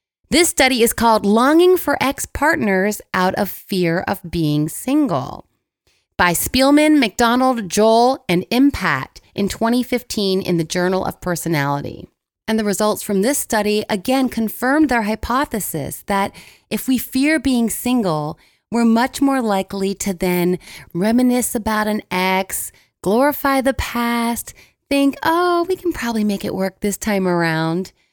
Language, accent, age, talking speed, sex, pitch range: English, American, 30-49, 140 wpm, female, 185-255 Hz